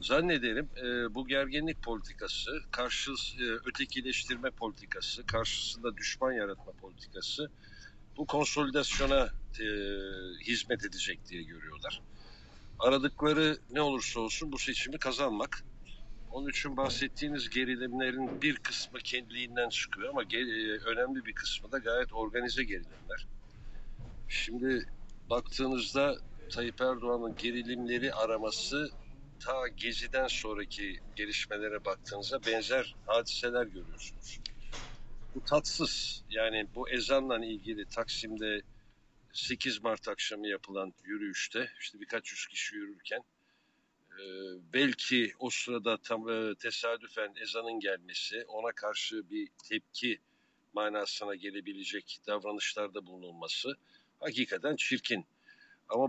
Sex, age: male, 60-79